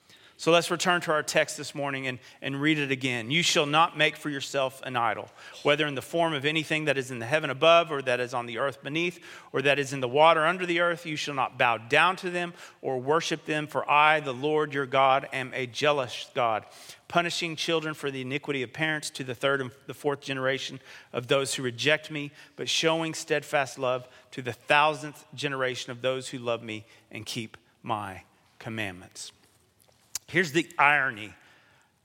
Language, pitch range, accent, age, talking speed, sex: English, 130-155 Hz, American, 40-59, 200 wpm, male